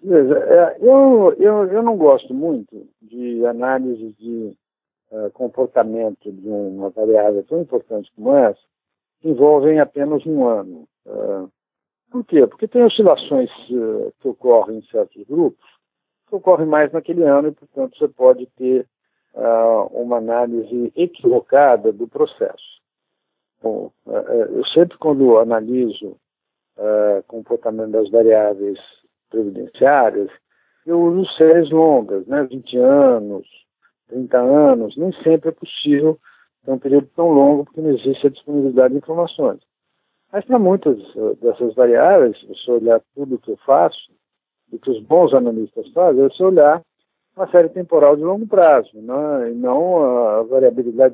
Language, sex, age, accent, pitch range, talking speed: Portuguese, male, 60-79, Brazilian, 120-195 Hz, 140 wpm